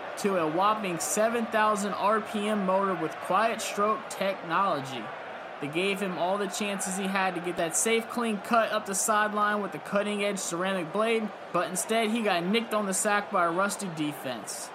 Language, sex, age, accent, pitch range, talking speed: English, male, 20-39, American, 160-200 Hz, 185 wpm